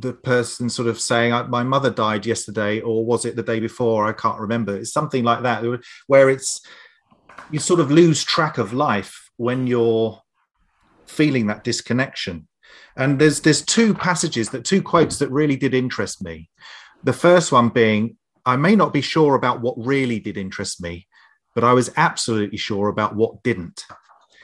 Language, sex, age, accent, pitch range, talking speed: English, male, 30-49, British, 110-140 Hz, 175 wpm